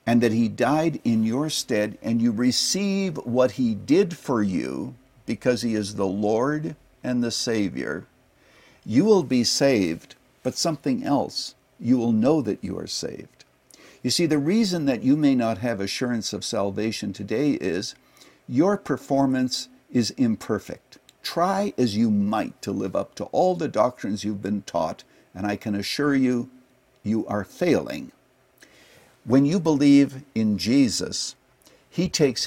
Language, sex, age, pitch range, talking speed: English, male, 60-79, 110-150 Hz, 155 wpm